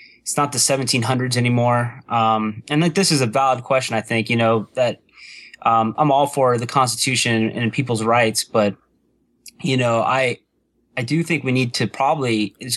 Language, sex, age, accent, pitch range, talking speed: English, male, 20-39, American, 110-135 Hz, 195 wpm